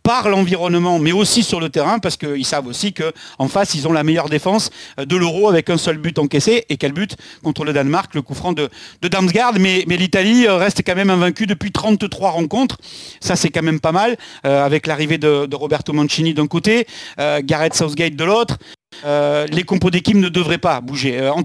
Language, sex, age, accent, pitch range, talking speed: French, male, 40-59, French, 155-195 Hz, 220 wpm